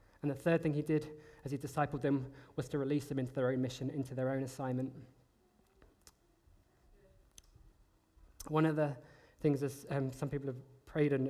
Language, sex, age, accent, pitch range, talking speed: English, male, 20-39, British, 135-150 Hz, 175 wpm